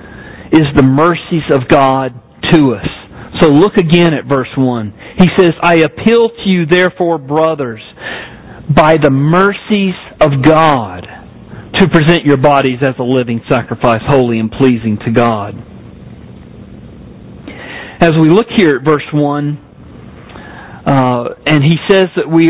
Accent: American